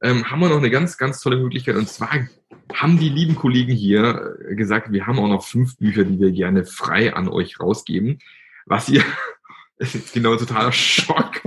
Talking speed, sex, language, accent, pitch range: 210 wpm, male, German, German, 110-155 Hz